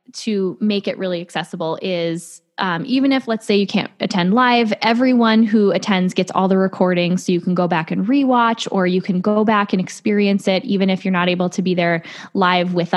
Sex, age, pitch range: female, 10-29, 180-220 Hz